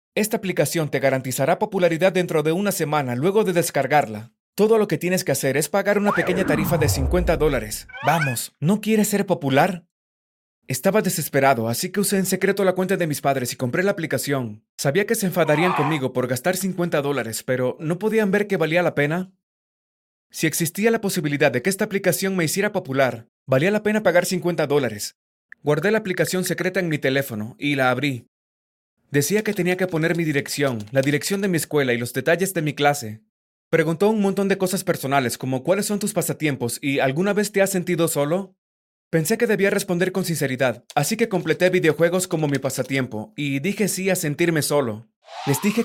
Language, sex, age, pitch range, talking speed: Spanish, male, 30-49, 140-190 Hz, 195 wpm